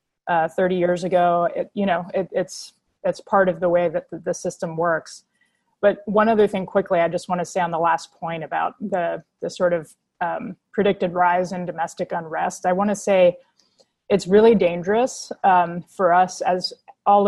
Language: English